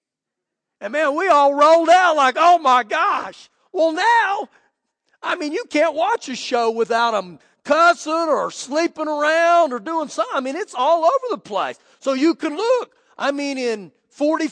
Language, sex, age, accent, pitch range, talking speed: English, male, 40-59, American, 230-320 Hz, 180 wpm